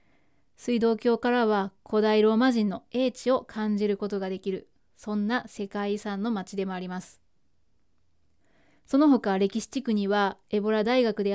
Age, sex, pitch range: 20-39, female, 205-260 Hz